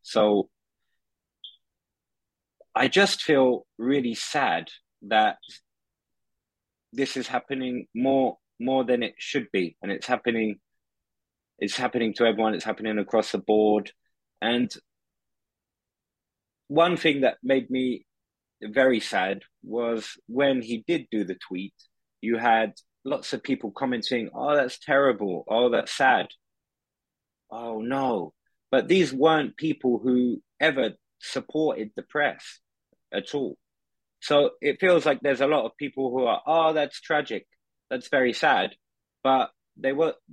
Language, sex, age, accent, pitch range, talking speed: English, male, 20-39, British, 110-135 Hz, 130 wpm